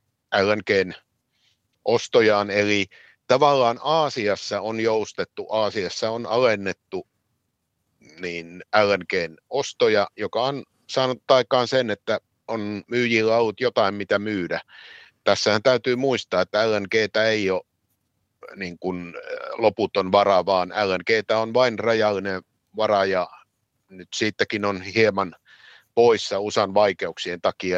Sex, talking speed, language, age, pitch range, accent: male, 105 wpm, Finnish, 50-69, 100-125 Hz, native